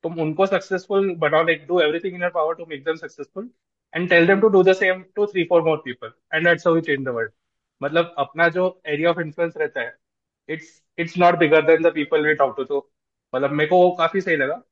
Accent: native